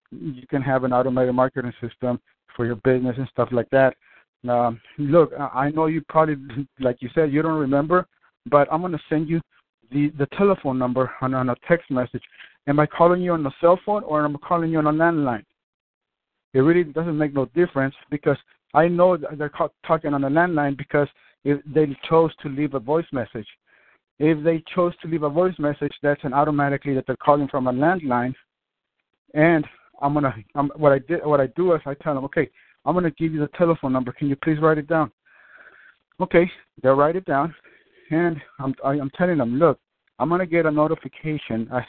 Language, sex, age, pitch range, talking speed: English, male, 60-79, 130-160 Hz, 205 wpm